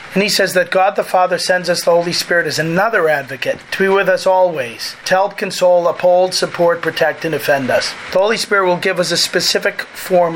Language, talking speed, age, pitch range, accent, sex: English, 220 wpm, 40-59, 165-190 Hz, American, male